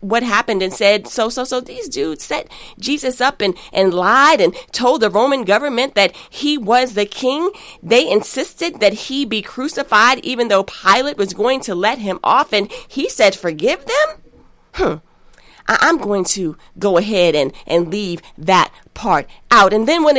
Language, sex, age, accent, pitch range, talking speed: English, female, 30-49, American, 200-265 Hz, 180 wpm